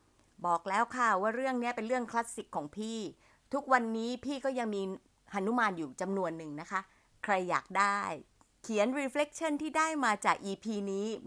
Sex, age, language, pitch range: female, 30-49, Thai, 180-245 Hz